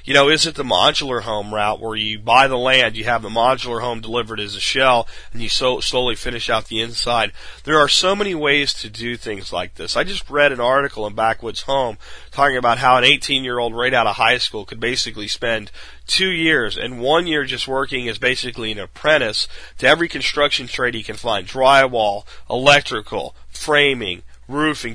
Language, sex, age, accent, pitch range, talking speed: English, male, 30-49, American, 115-140 Hz, 195 wpm